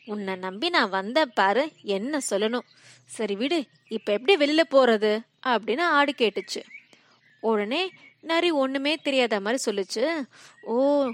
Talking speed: 125 wpm